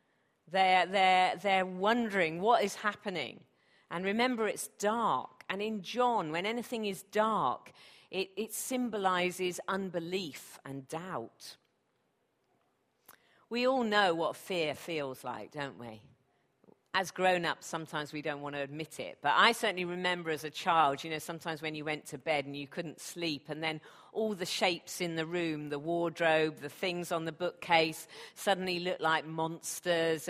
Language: English